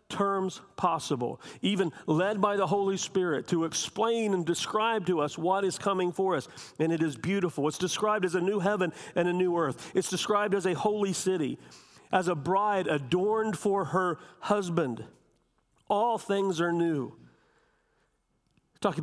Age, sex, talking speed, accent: 50-69, male, 160 wpm, American